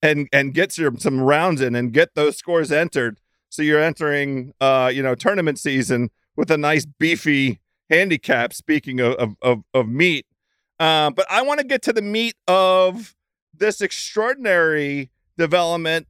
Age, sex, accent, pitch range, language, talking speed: 40-59, male, American, 145-185 Hz, English, 155 wpm